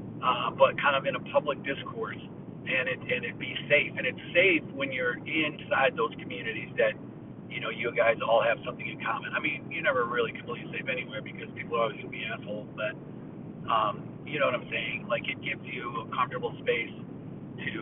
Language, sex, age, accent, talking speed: English, male, 40-59, American, 210 wpm